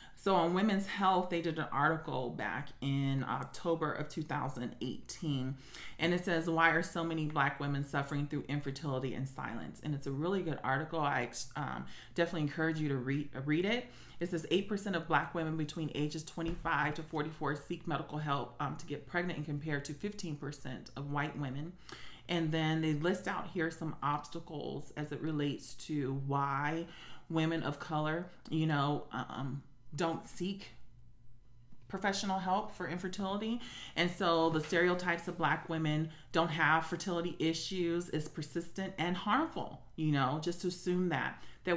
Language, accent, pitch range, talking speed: English, American, 145-170 Hz, 165 wpm